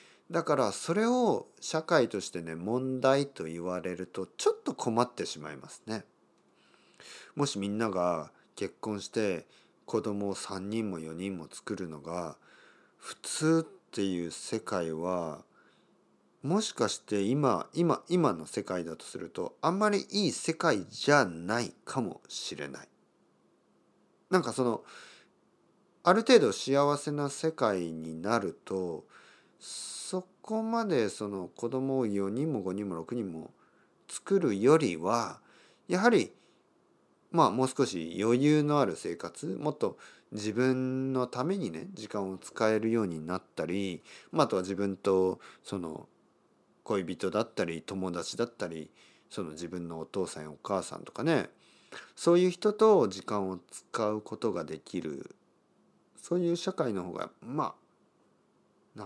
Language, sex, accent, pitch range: Japanese, male, native, 95-145 Hz